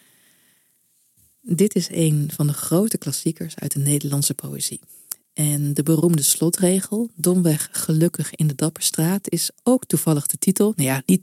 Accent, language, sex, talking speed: Dutch, Dutch, female, 150 wpm